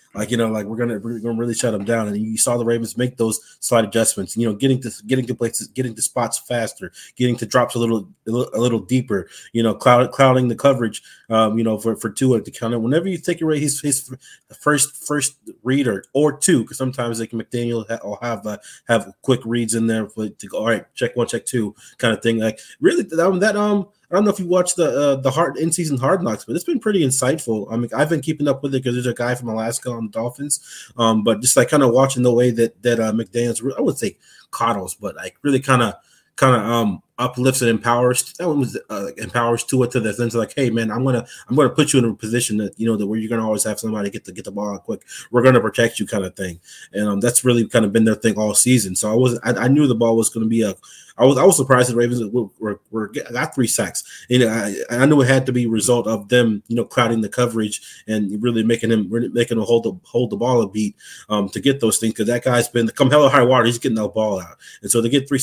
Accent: American